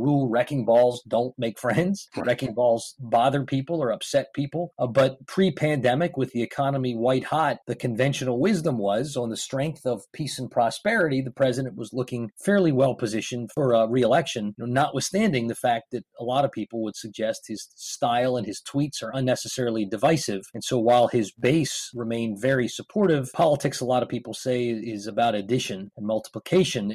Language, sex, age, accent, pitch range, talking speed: English, male, 30-49, American, 115-140 Hz, 175 wpm